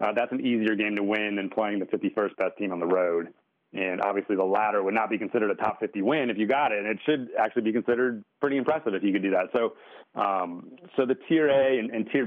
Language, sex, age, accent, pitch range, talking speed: English, male, 30-49, American, 100-120 Hz, 265 wpm